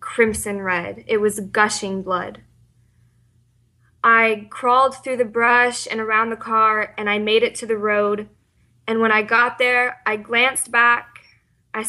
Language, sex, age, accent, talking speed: English, female, 20-39, American, 155 wpm